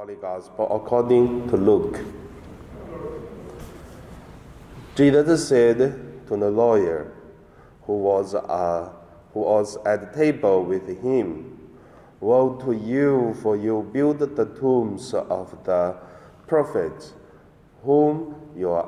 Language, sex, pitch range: Chinese, male, 105-145 Hz